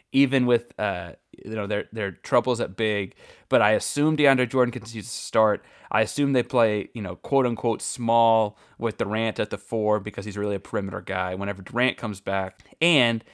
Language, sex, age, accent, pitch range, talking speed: English, male, 20-39, American, 105-130 Hz, 195 wpm